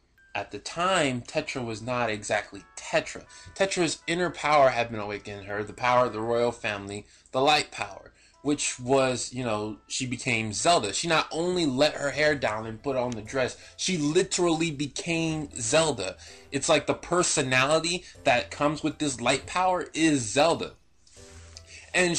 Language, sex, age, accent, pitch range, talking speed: English, male, 20-39, American, 110-185 Hz, 165 wpm